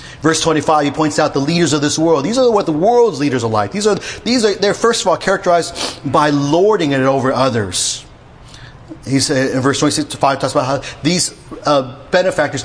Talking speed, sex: 210 wpm, male